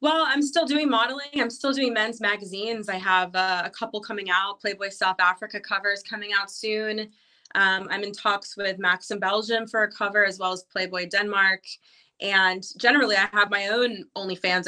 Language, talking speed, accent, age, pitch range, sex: English, 190 wpm, American, 20-39, 180-215 Hz, female